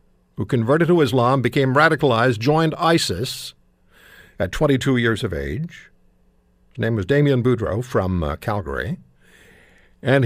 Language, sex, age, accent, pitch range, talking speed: English, male, 60-79, American, 110-145 Hz, 130 wpm